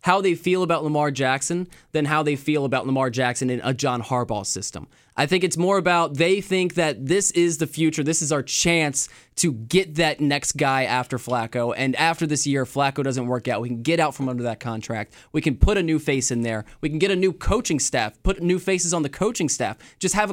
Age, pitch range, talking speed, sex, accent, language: 20-39, 130-170 Hz, 240 wpm, male, American, English